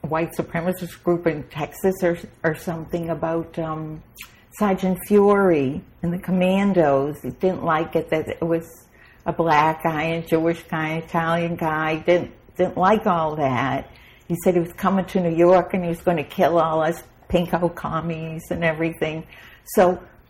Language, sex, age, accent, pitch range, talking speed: English, female, 60-79, American, 170-245 Hz, 165 wpm